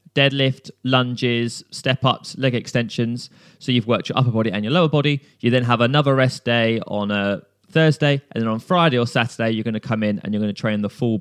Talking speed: 215 wpm